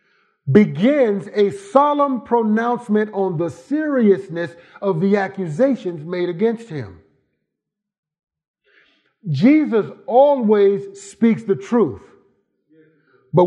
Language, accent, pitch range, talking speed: English, American, 140-230 Hz, 85 wpm